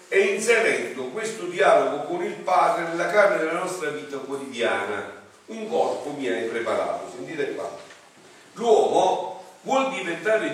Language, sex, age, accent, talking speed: Italian, male, 50-69, native, 130 wpm